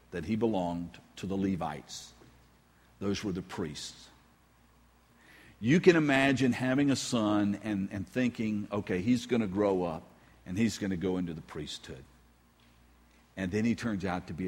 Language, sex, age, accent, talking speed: English, male, 50-69, American, 165 wpm